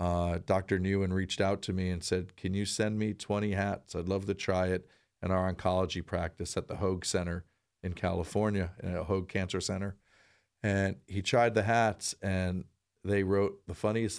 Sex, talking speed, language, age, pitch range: male, 185 wpm, English, 40-59, 90-100 Hz